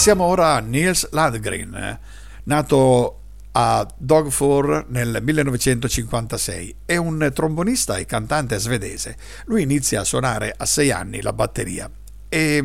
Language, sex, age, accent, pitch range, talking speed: Italian, male, 50-69, native, 115-150 Hz, 125 wpm